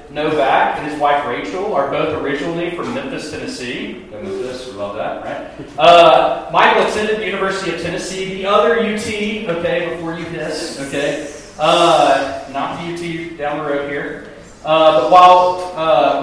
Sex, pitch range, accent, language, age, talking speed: male, 145-180 Hz, American, English, 40-59, 155 wpm